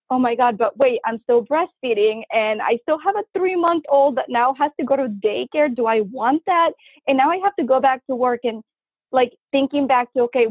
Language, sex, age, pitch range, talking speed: English, female, 20-39, 225-265 Hz, 240 wpm